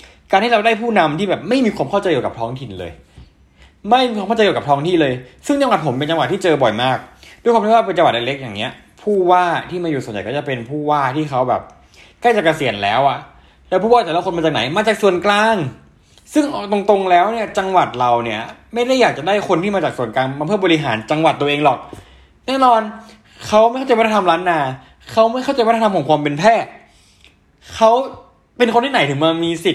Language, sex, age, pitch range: Thai, male, 20-39, 155-230 Hz